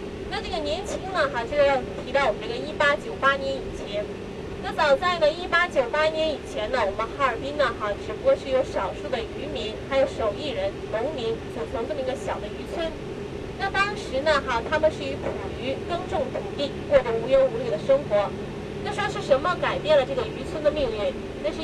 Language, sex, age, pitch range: Chinese, female, 20-39, 270-360 Hz